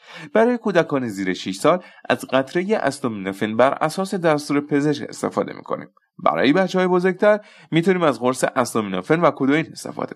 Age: 30-49